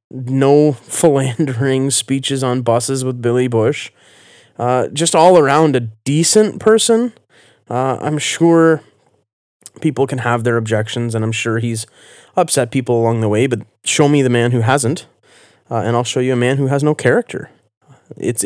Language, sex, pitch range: English, male, 115-140 Hz